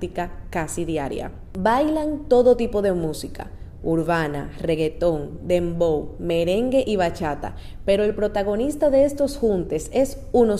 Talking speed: 120 wpm